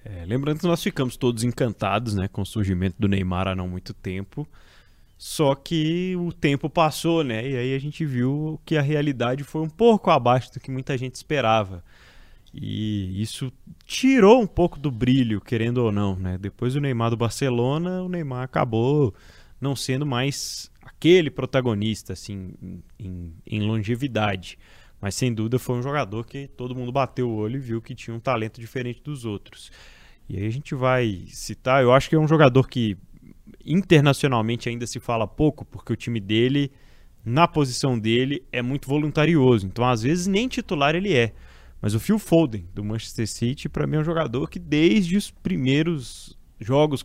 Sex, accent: male, Brazilian